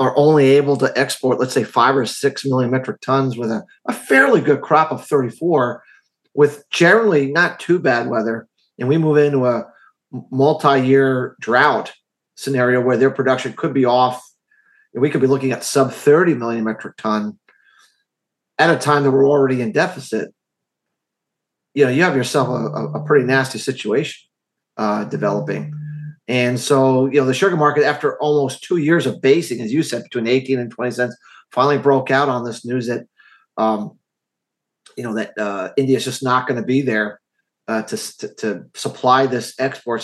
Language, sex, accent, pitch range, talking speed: English, male, American, 125-145 Hz, 180 wpm